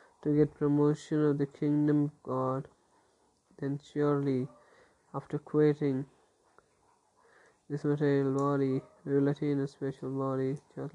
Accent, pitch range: native, 135-150 Hz